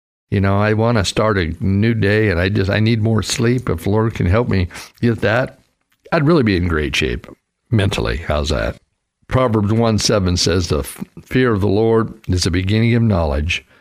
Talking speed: 200 wpm